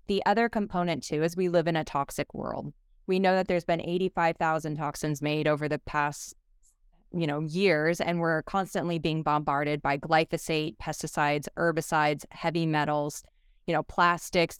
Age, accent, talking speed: 20-39, American, 160 wpm